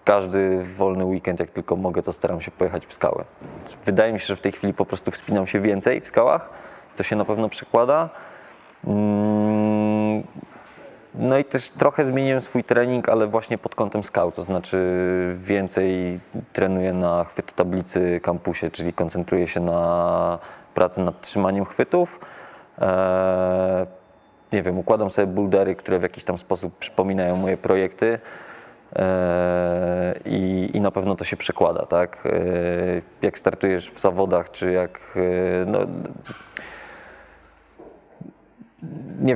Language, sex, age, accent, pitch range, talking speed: Polish, male, 20-39, native, 90-105 Hz, 135 wpm